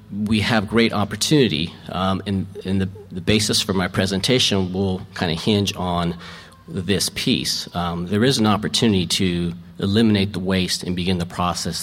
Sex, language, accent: male, English, American